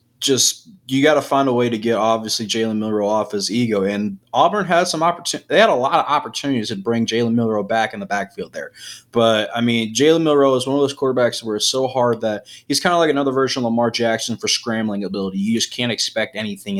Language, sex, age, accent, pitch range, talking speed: English, male, 20-39, American, 110-135 Hz, 240 wpm